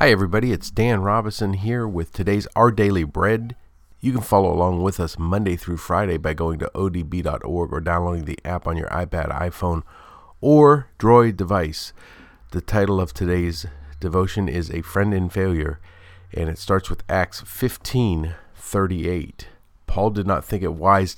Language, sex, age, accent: English, male, 40-59, American